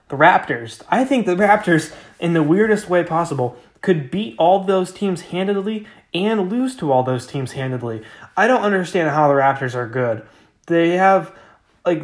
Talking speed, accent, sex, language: 175 wpm, American, male, English